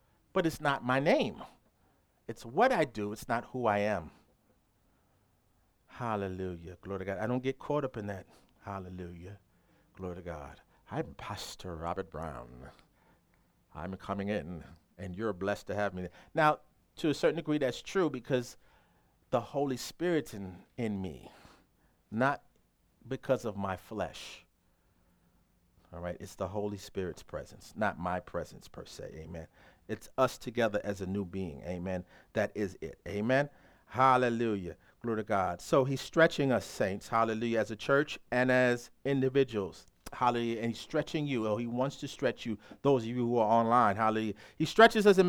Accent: American